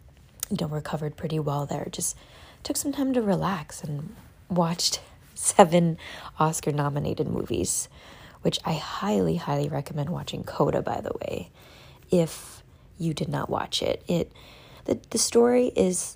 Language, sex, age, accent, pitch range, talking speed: English, female, 20-39, American, 150-205 Hz, 140 wpm